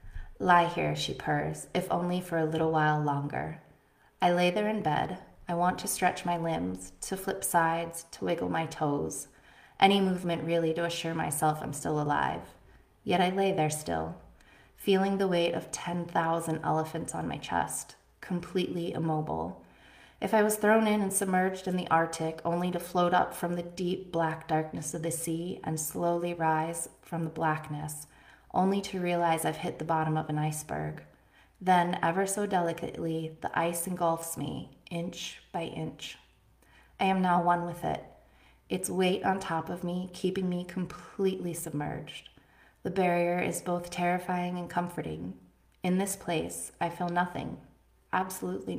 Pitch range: 155-180 Hz